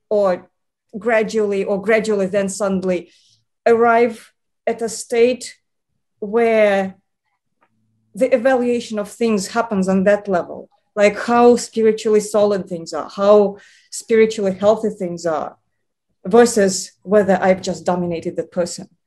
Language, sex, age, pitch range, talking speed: English, female, 30-49, 185-225 Hz, 115 wpm